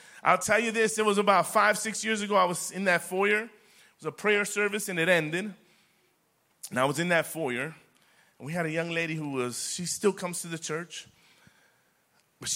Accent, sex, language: American, male, English